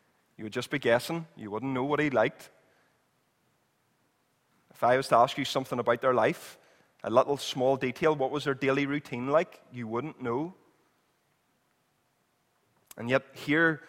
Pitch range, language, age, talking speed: 125-155 Hz, English, 20-39, 160 wpm